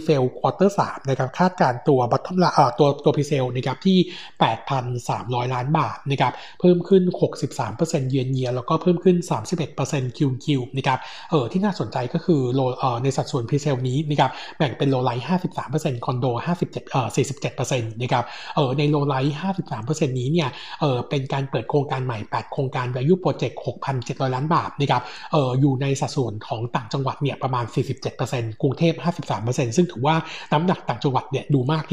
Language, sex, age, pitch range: Thai, male, 60-79, 130-160 Hz